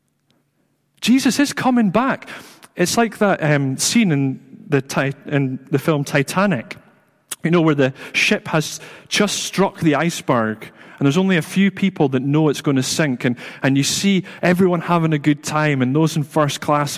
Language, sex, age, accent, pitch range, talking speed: English, male, 30-49, British, 130-180 Hz, 175 wpm